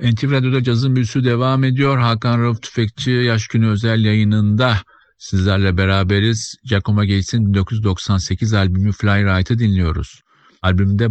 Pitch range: 95-115 Hz